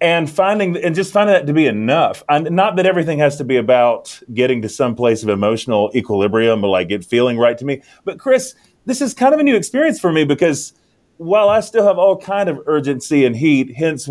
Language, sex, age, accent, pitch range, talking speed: English, male, 30-49, American, 120-155 Hz, 230 wpm